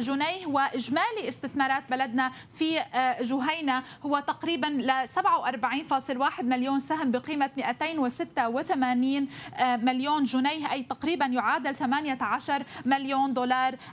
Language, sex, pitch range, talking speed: Arabic, female, 255-315 Hz, 95 wpm